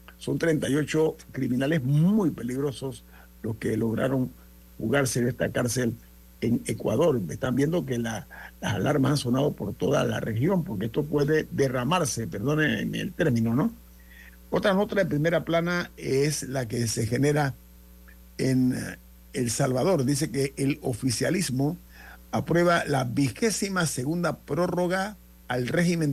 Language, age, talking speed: Spanish, 50-69, 135 wpm